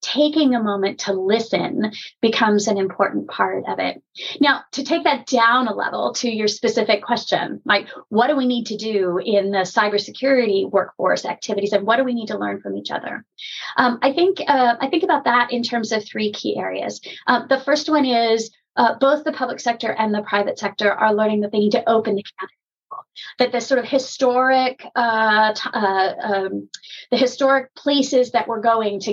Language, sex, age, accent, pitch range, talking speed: English, female, 30-49, American, 205-255 Hz, 200 wpm